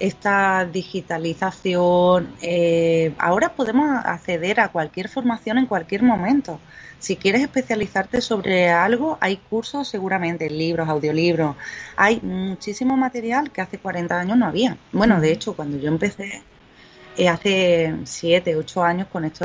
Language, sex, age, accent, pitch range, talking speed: Spanish, female, 30-49, Spanish, 170-225 Hz, 135 wpm